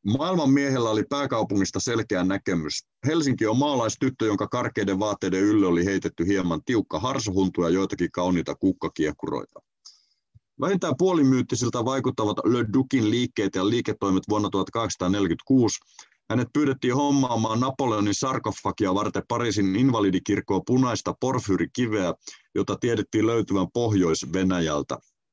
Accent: native